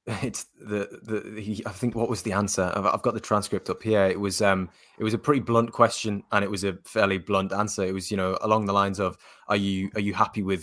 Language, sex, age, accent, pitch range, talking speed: English, male, 20-39, British, 95-105 Hz, 265 wpm